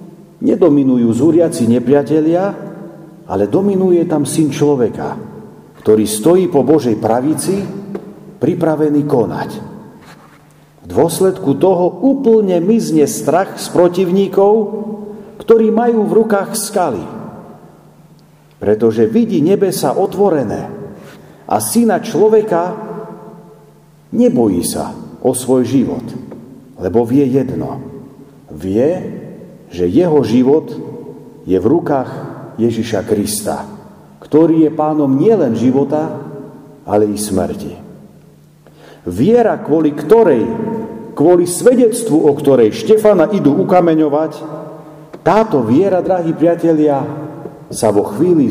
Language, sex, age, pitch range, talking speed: Slovak, male, 50-69, 140-195 Hz, 95 wpm